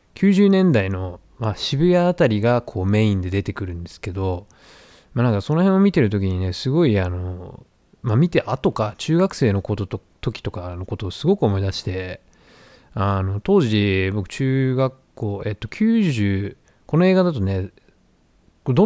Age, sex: 20-39, male